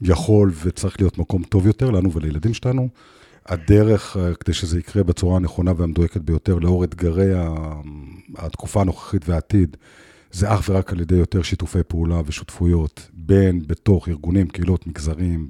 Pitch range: 85-105 Hz